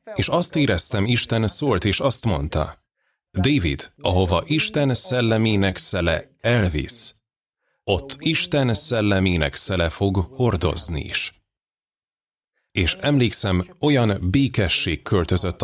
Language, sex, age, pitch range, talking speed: Hungarian, male, 30-49, 90-120 Hz, 100 wpm